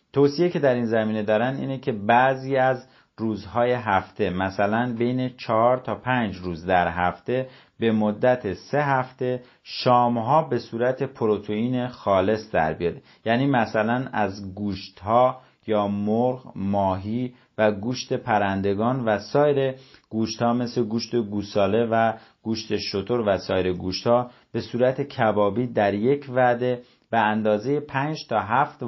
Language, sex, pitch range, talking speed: Persian, male, 105-125 Hz, 135 wpm